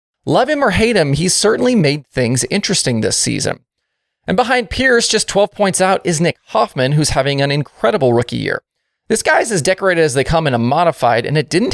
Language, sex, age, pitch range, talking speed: English, male, 30-49, 130-195 Hz, 210 wpm